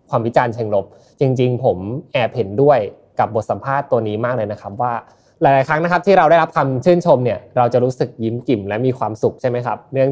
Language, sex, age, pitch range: Thai, male, 20-39, 115-145 Hz